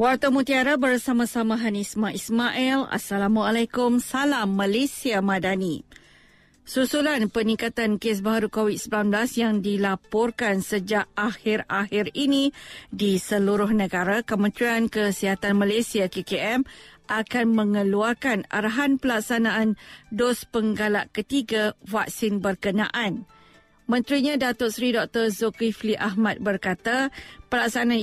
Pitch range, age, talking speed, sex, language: 205-240 Hz, 50-69, 90 wpm, female, Malay